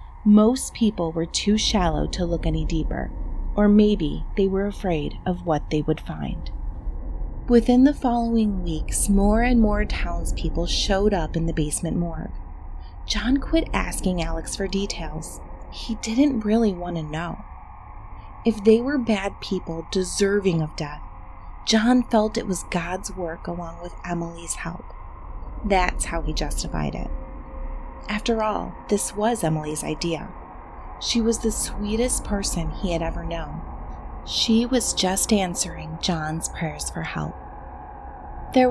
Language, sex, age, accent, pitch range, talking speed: English, female, 30-49, American, 160-215 Hz, 145 wpm